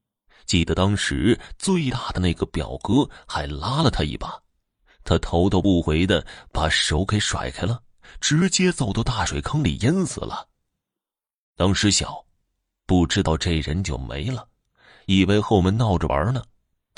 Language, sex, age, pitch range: Chinese, male, 30-49, 85-115 Hz